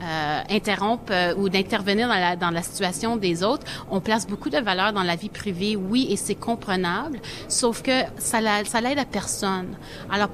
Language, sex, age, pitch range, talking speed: French, female, 30-49, 185-230 Hz, 195 wpm